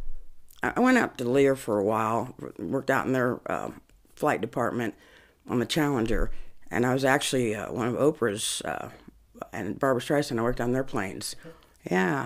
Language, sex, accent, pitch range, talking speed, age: English, female, American, 125-160 Hz, 175 wpm, 50-69